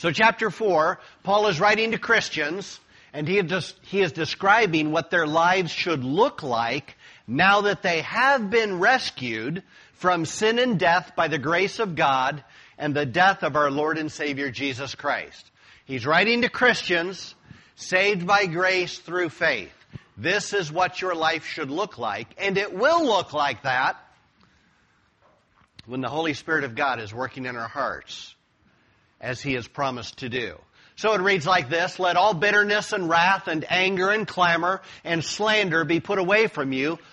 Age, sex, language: 50-69, male, English